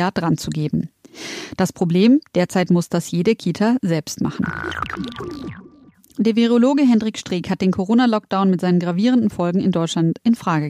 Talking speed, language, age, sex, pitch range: 135 wpm, German, 30-49, female, 175-220 Hz